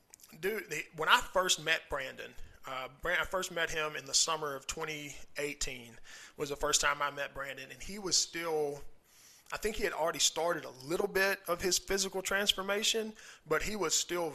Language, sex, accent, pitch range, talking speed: English, male, American, 140-180 Hz, 190 wpm